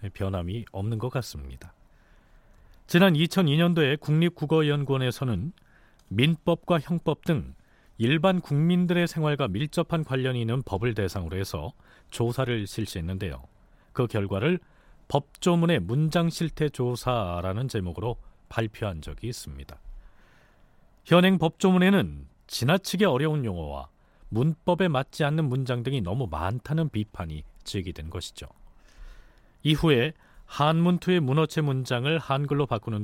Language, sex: Korean, male